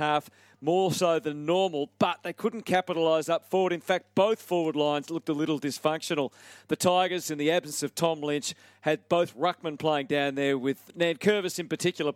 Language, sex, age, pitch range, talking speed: English, male, 40-59, 145-170 Hz, 195 wpm